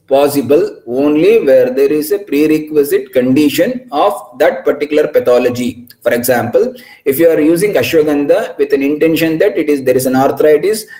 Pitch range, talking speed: 155-220 Hz, 160 wpm